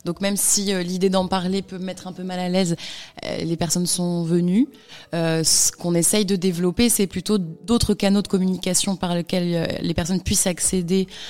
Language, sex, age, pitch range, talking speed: French, female, 20-39, 160-185 Hz, 195 wpm